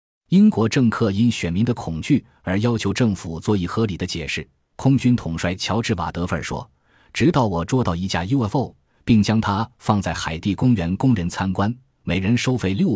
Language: Chinese